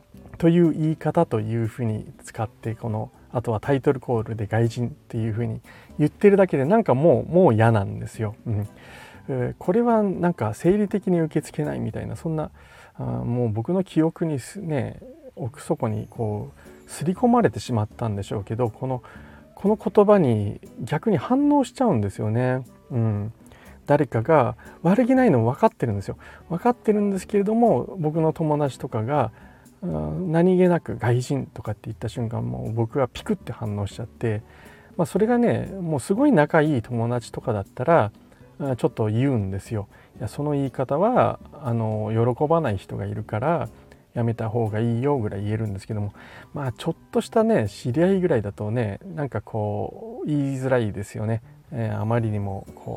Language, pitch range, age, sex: Japanese, 110-160 Hz, 40-59, male